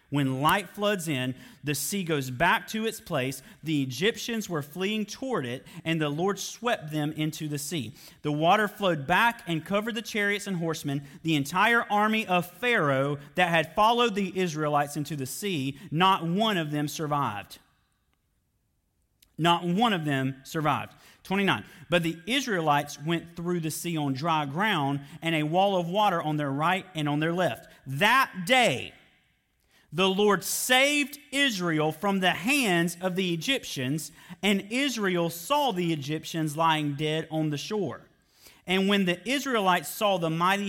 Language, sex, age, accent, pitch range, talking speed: English, male, 40-59, American, 145-195 Hz, 160 wpm